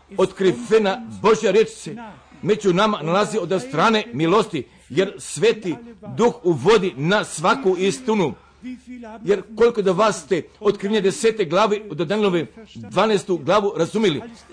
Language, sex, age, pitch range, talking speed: Croatian, male, 50-69, 165-210 Hz, 125 wpm